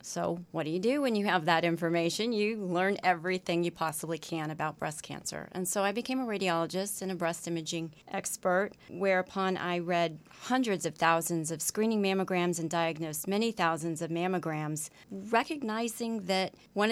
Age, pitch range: 30-49, 165-200 Hz